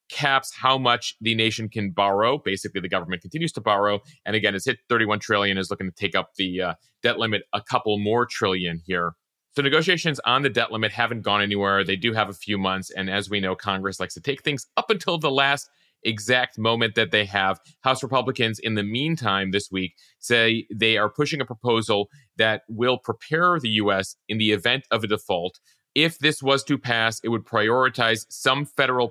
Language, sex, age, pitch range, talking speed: English, male, 30-49, 100-125 Hz, 205 wpm